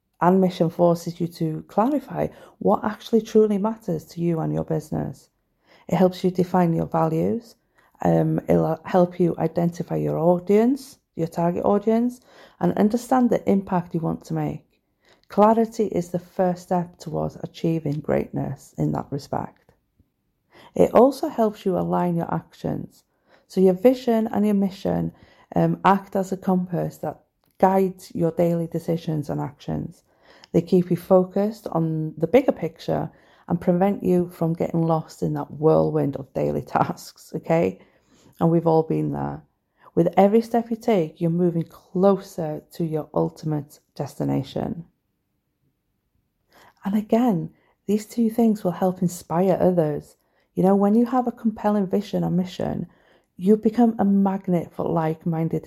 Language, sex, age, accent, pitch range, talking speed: English, female, 40-59, British, 160-200 Hz, 150 wpm